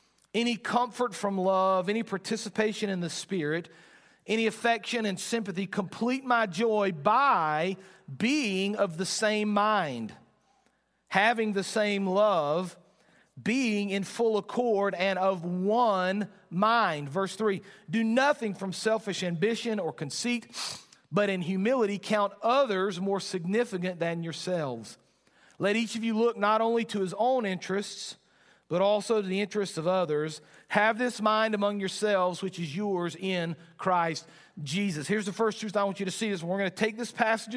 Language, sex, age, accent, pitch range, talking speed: English, male, 40-59, American, 185-225 Hz, 155 wpm